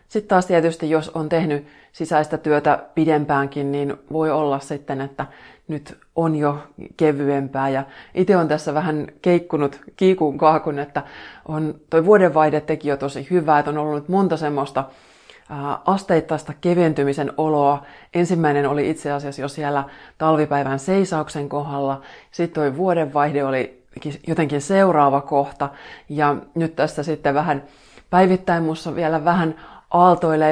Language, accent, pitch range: Finnish, native, 140-160 Hz